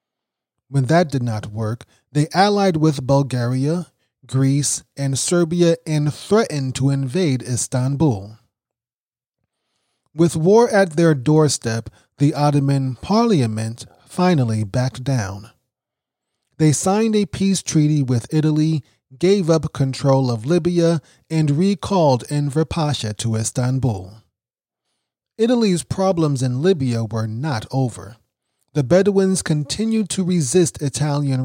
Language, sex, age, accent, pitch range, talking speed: English, male, 30-49, American, 120-165 Hz, 115 wpm